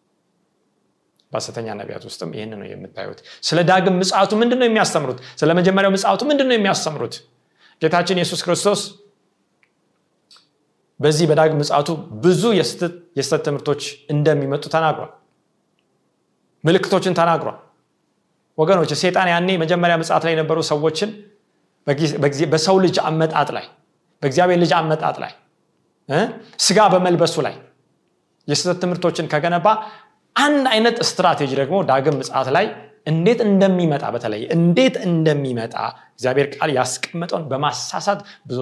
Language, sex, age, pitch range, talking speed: Amharic, male, 30-49, 150-195 Hz, 95 wpm